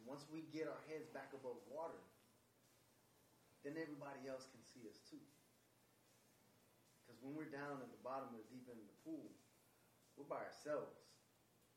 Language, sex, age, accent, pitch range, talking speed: English, male, 30-49, American, 130-160 Hz, 165 wpm